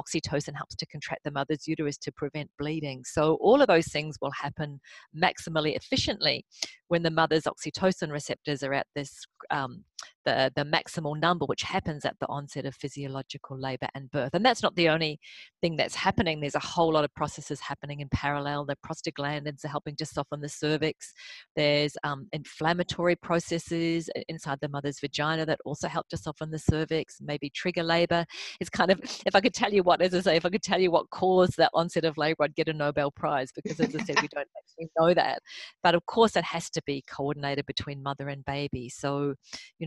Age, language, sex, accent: 40-59, English, female, Australian